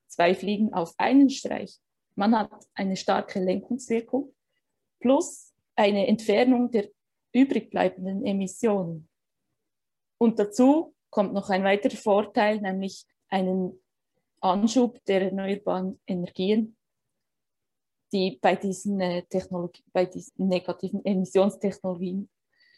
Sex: female